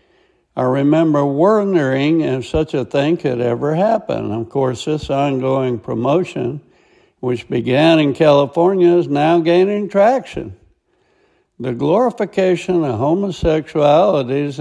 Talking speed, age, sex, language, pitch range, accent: 110 wpm, 60-79, male, English, 135-185 Hz, American